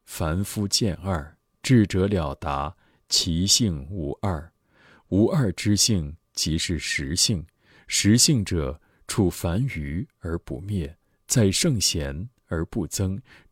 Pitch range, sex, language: 80-110 Hz, male, Chinese